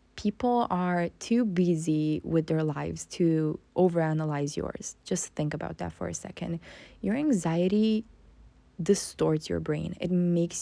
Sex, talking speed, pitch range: female, 135 wpm, 160-205 Hz